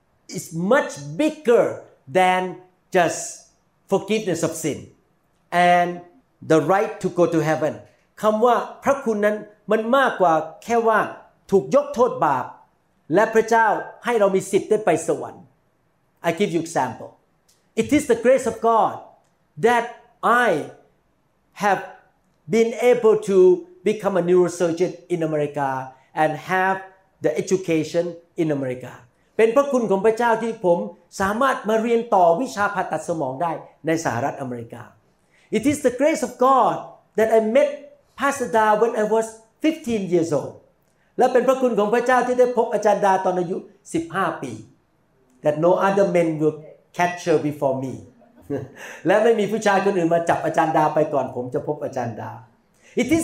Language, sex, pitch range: Thai, male, 170-230 Hz